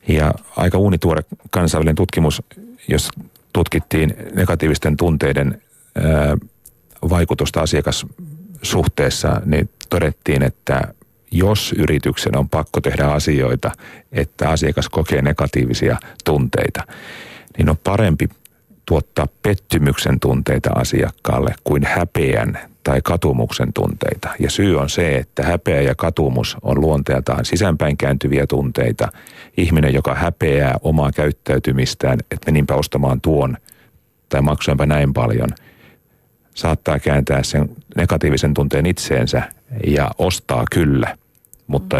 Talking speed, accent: 105 wpm, native